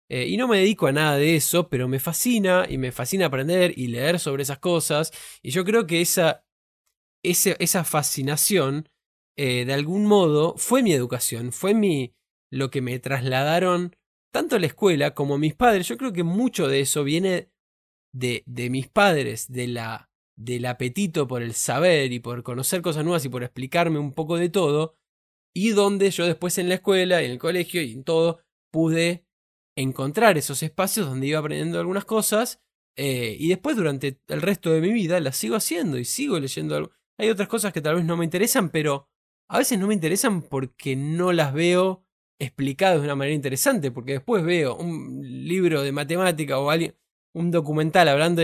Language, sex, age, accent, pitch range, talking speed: Spanish, male, 20-39, Argentinian, 135-180 Hz, 190 wpm